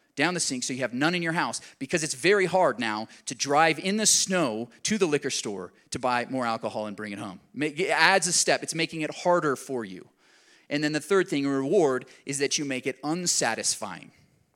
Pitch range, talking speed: 130-175 Hz, 225 wpm